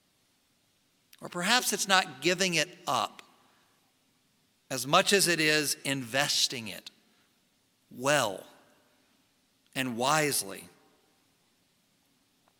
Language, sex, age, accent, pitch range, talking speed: English, male, 50-69, American, 185-245 Hz, 80 wpm